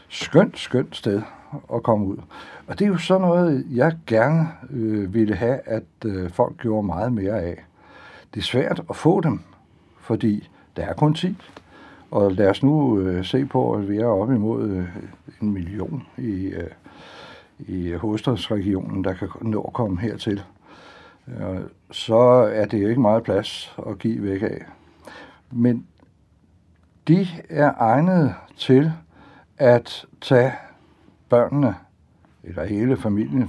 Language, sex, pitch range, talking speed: Danish, male, 95-120 Hz, 150 wpm